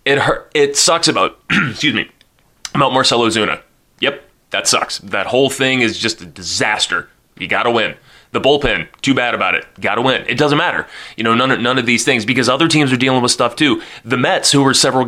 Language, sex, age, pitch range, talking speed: English, male, 20-39, 105-130 Hz, 220 wpm